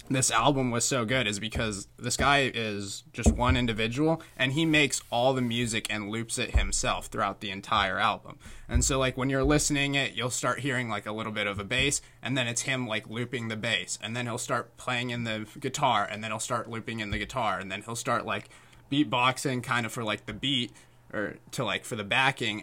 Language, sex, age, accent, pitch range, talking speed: English, male, 20-39, American, 110-135 Hz, 230 wpm